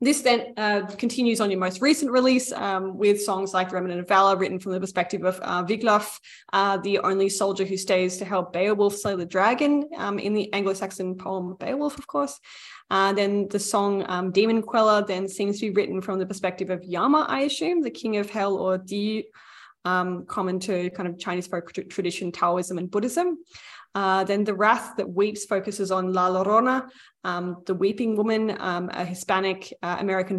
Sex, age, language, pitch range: female, 10-29, English, 185-220 Hz